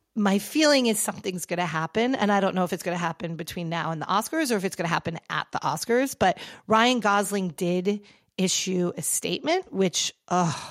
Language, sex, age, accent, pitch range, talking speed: English, female, 40-59, American, 160-205 Hz, 220 wpm